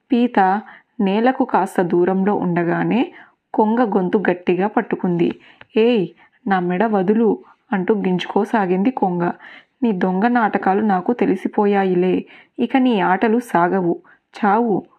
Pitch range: 180-235 Hz